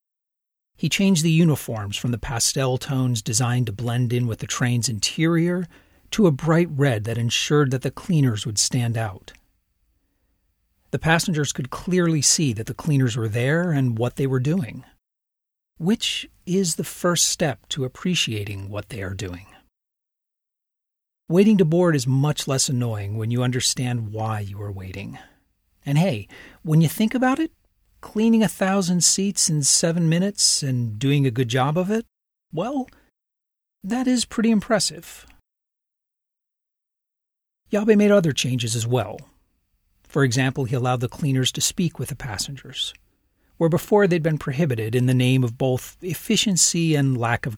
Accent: American